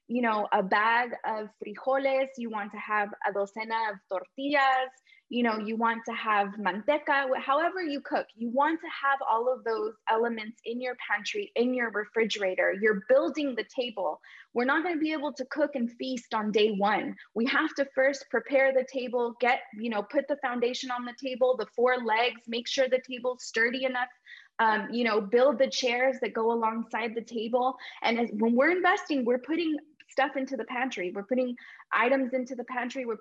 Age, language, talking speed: 20-39, English, 195 wpm